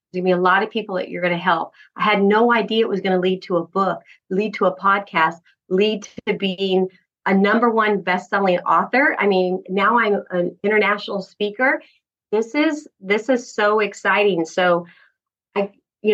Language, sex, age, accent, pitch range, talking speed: English, female, 30-49, American, 190-240 Hz, 195 wpm